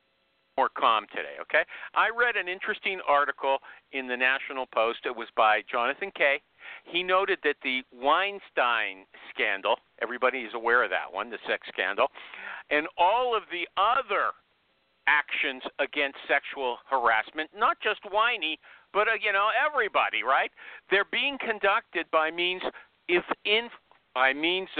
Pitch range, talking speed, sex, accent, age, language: 150-235 Hz, 145 wpm, male, American, 50-69, English